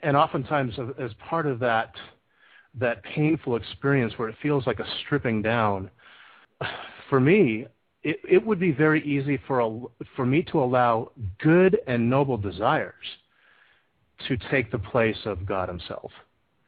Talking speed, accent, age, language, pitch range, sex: 150 wpm, American, 40-59, English, 115-145 Hz, male